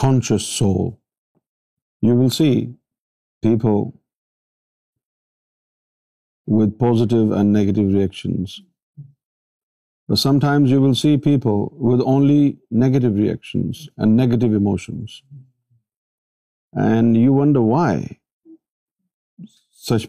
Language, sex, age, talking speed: Urdu, male, 50-69, 85 wpm